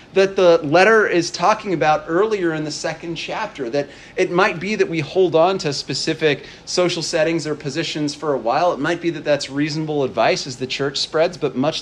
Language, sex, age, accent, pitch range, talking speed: English, male, 40-59, American, 150-180 Hz, 205 wpm